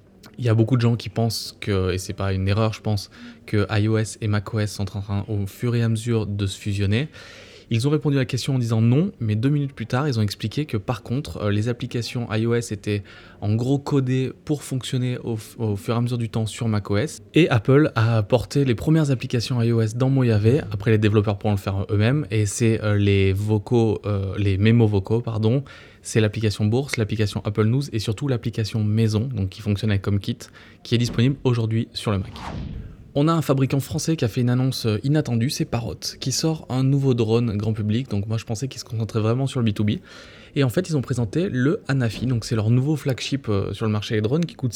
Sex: male